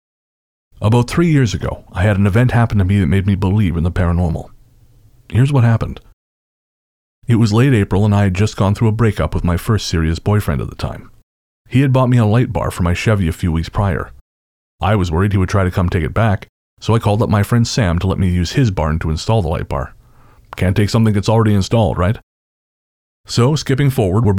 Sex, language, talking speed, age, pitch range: male, English, 235 wpm, 30-49, 90-115 Hz